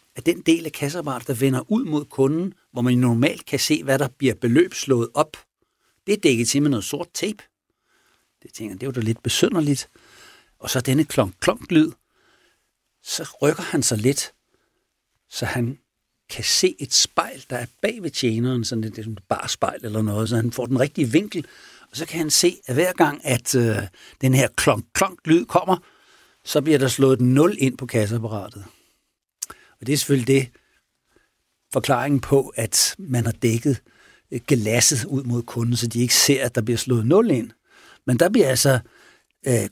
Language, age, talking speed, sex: Danish, 60-79, 180 wpm, male